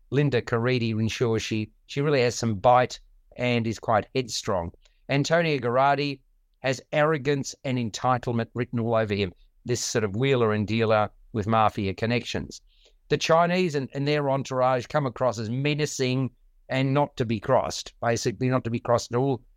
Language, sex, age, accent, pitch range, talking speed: English, male, 50-69, Australian, 115-140 Hz, 165 wpm